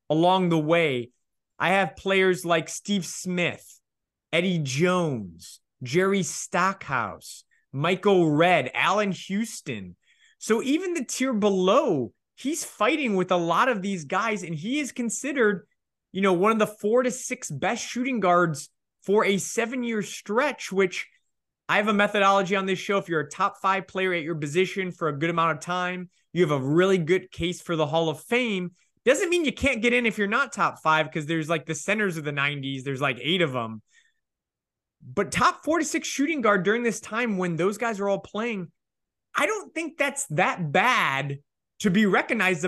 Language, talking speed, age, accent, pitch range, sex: English, 185 wpm, 20-39, American, 165-215 Hz, male